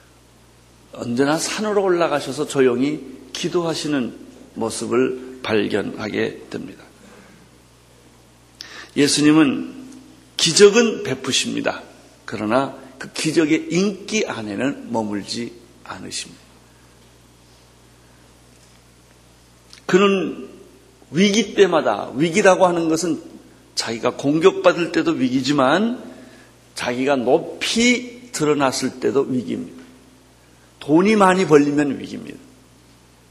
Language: Korean